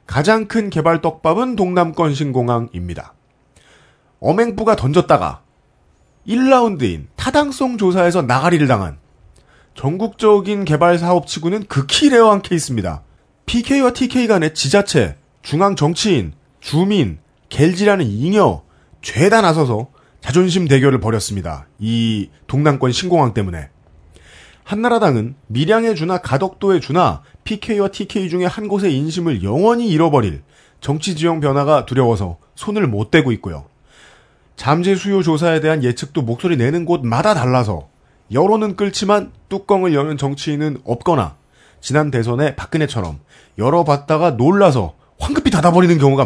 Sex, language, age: male, Korean, 40-59